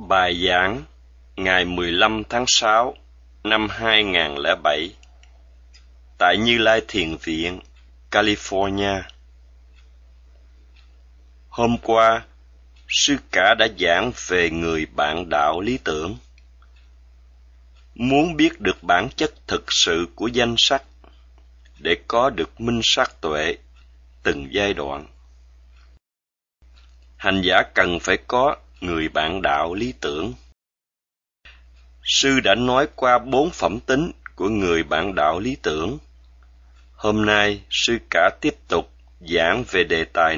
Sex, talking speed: male, 115 wpm